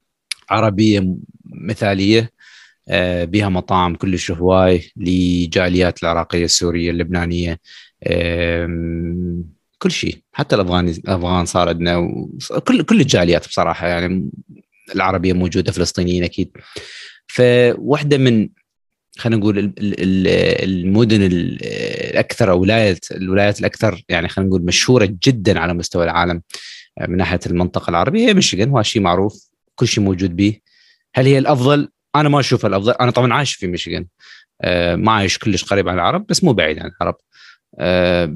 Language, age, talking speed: Arabic, 30-49, 125 wpm